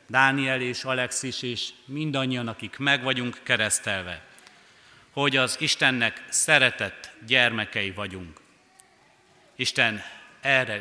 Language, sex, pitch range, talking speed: Hungarian, male, 110-135 Hz, 95 wpm